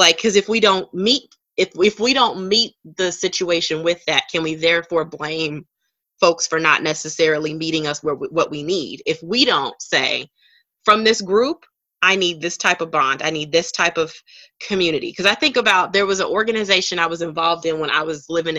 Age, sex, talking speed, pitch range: 20-39, female, 205 wpm, 165-225 Hz